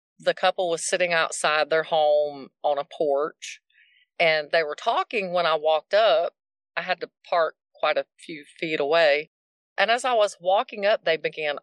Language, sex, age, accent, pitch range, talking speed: English, female, 40-59, American, 155-205 Hz, 180 wpm